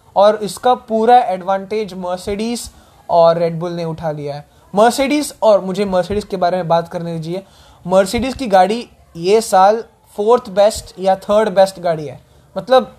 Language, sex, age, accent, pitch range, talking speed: English, male, 20-39, Indian, 185-230 Hz, 160 wpm